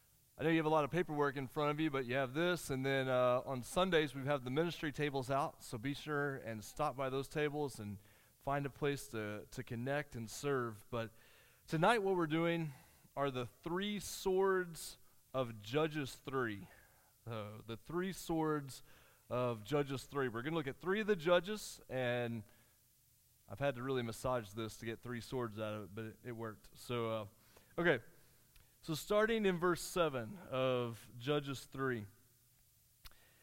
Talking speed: 180 wpm